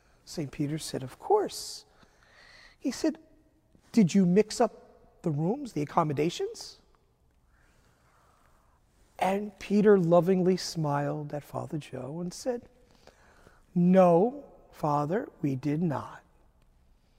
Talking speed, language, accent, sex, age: 100 wpm, English, American, male, 40-59